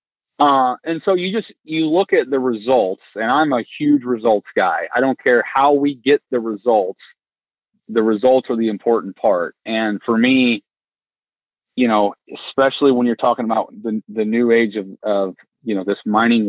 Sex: male